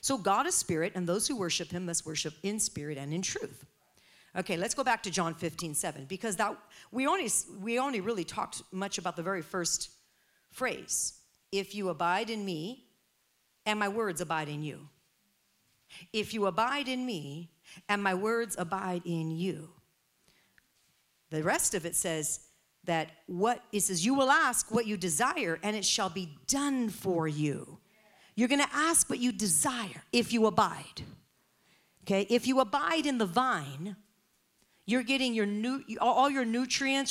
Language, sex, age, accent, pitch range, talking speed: English, female, 50-69, American, 170-240 Hz, 165 wpm